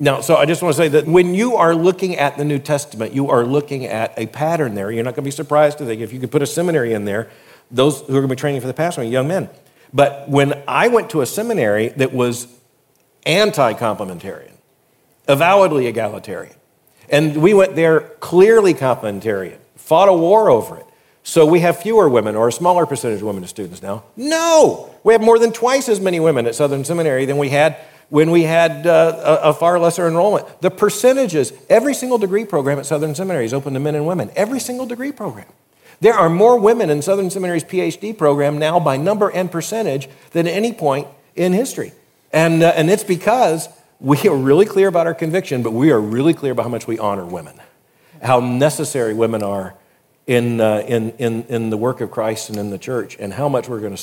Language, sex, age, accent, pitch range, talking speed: English, male, 50-69, American, 130-180 Hz, 220 wpm